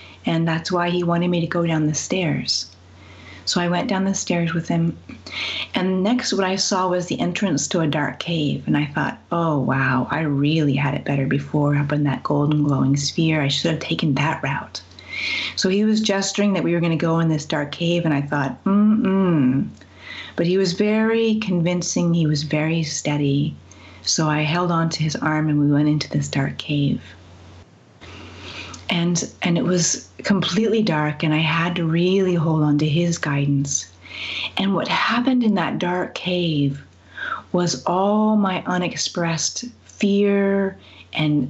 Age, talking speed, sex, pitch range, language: 30-49, 180 wpm, female, 145-180 Hz, English